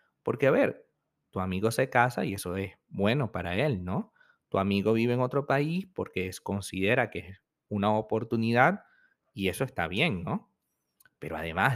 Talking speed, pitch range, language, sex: 170 wpm, 100-135 Hz, Spanish, male